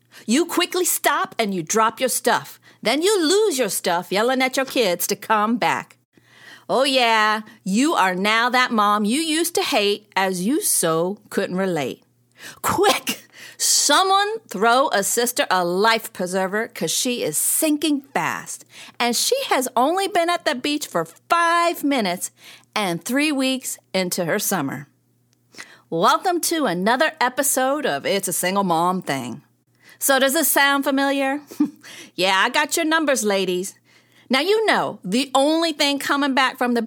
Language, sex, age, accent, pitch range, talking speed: English, female, 50-69, American, 195-300 Hz, 160 wpm